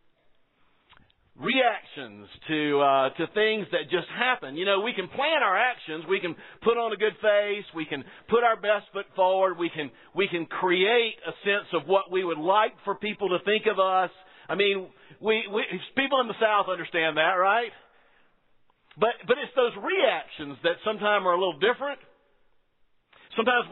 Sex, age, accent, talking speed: male, 50-69, American, 175 wpm